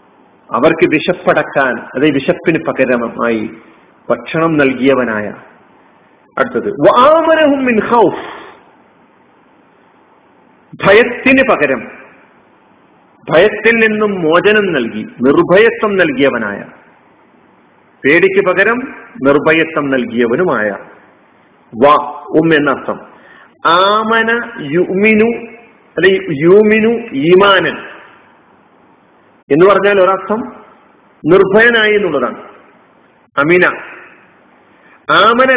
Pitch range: 175-230 Hz